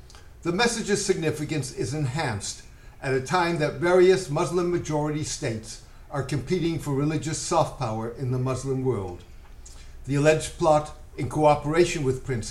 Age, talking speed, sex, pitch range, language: 60-79, 145 wpm, male, 120-160 Hz, English